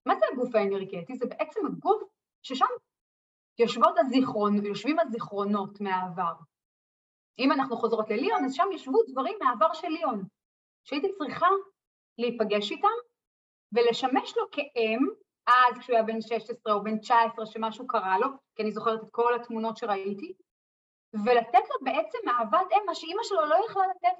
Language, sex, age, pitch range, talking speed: English, female, 30-49, 215-310 Hz, 135 wpm